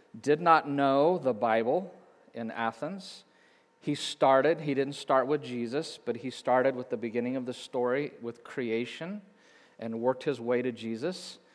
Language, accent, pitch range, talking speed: English, American, 125-150 Hz, 160 wpm